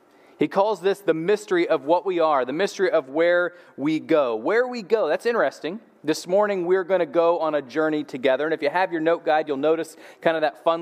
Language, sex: English, male